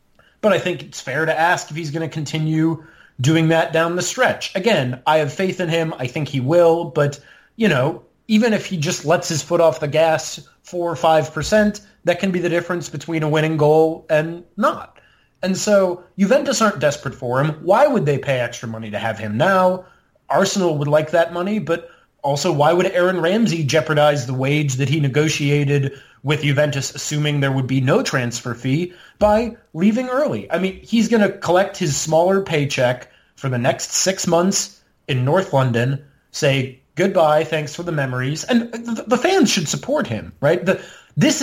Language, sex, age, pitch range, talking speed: English, male, 30-49, 140-185 Hz, 195 wpm